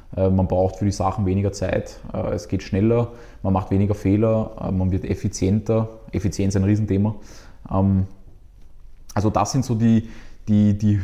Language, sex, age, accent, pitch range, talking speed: German, male, 20-39, Austrian, 95-105 Hz, 145 wpm